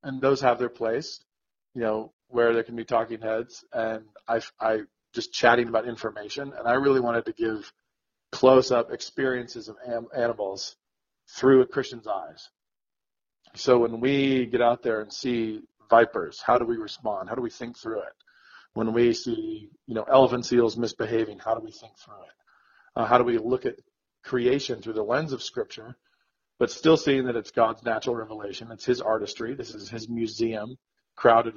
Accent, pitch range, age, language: American, 115-130 Hz, 40-59, English